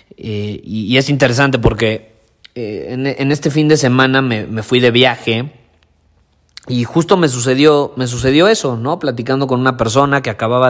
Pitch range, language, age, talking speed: 115-135 Hz, Spanish, 30-49, 180 wpm